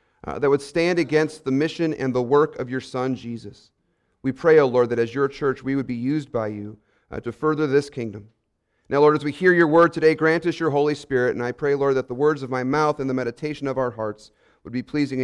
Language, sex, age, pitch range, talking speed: English, male, 40-59, 135-190 Hz, 255 wpm